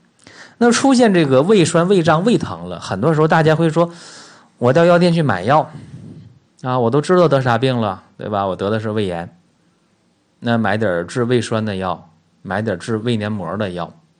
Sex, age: male, 30-49